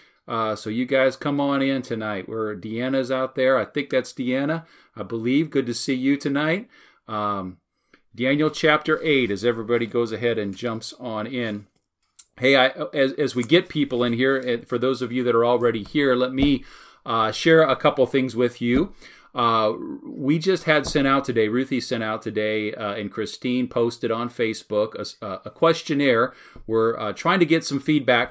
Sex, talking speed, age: male, 190 wpm, 40-59